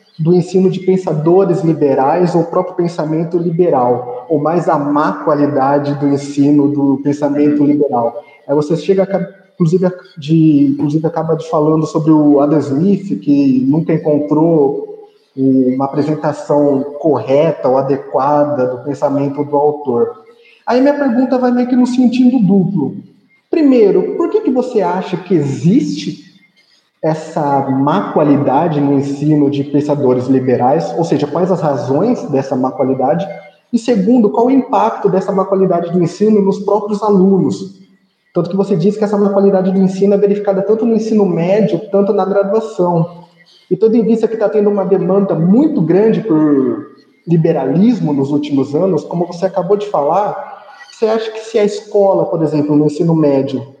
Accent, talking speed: Brazilian, 155 wpm